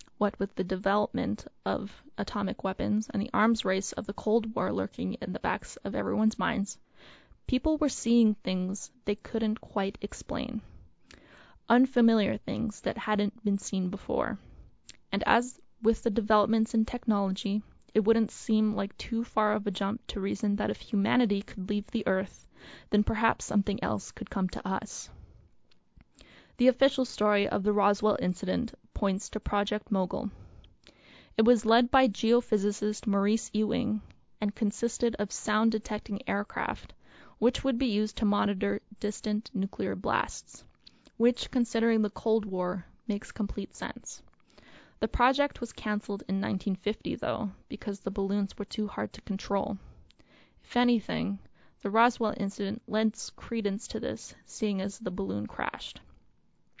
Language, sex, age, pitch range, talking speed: English, female, 20-39, 200-230 Hz, 150 wpm